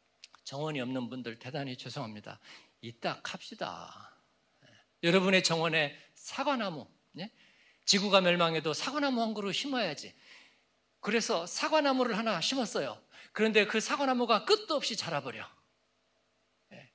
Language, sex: Korean, male